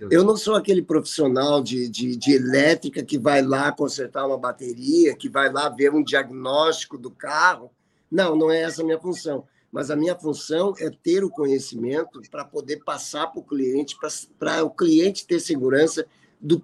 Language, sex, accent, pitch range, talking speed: Portuguese, male, Brazilian, 135-180 Hz, 175 wpm